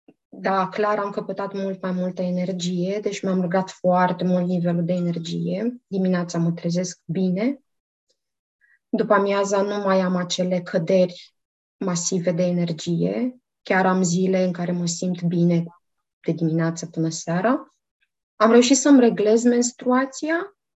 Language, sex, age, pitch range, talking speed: Romanian, female, 20-39, 180-220 Hz, 135 wpm